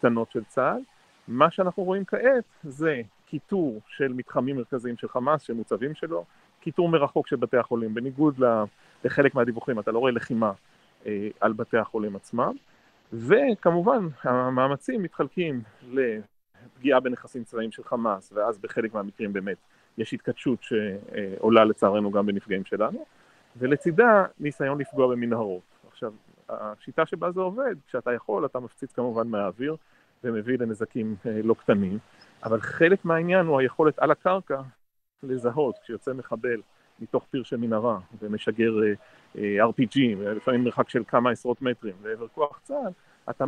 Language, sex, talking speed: Hebrew, male, 140 wpm